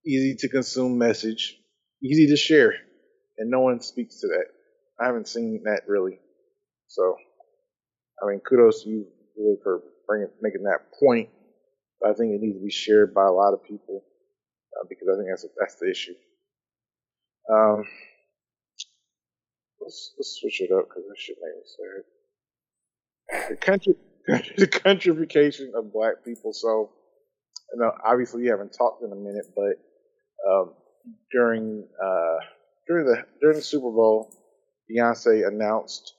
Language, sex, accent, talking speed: English, male, American, 155 wpm